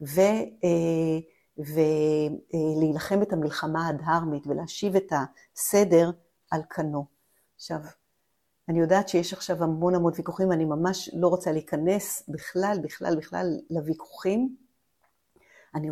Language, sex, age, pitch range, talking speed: Hebrew, female, 50-69, 155-195 Hz, 105 wpm